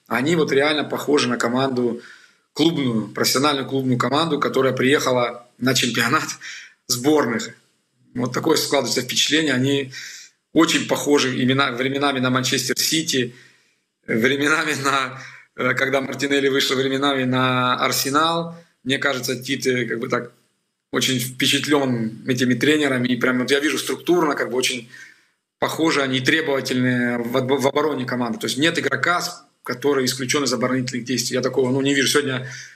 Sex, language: male, Russian